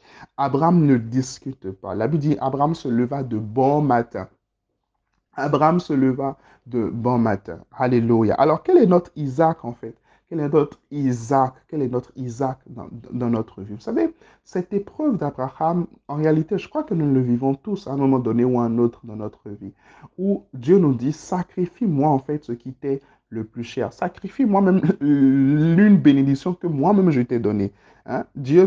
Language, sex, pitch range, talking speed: French, male, 125-170 Hz, 185 wpm